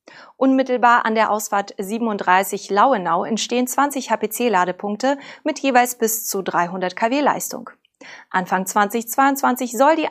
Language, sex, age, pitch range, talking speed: German, female, 30-49, 195-255 Hz, 120 wpm